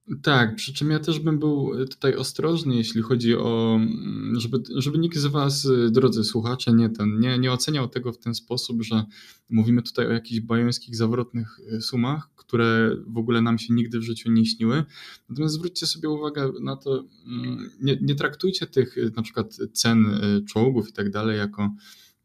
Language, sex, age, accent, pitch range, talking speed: Polish, male, 20-39, native, 105-120 Hz, 170 wpm